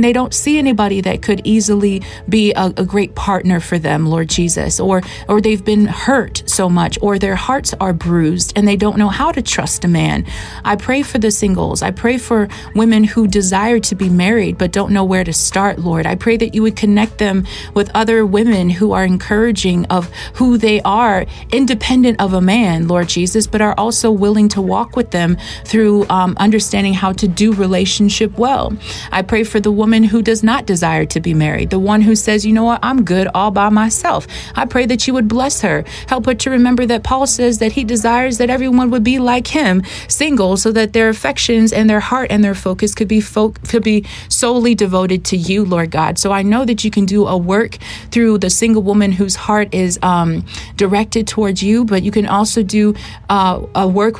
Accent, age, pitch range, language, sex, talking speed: American, 30-49, 195-230 Hz, English, female, 215 wpm